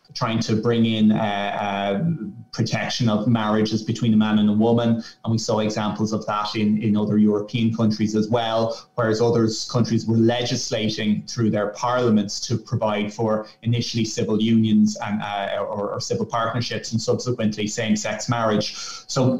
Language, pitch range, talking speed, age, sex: English, 110-125 Hz, 165 wpm, 30-49, male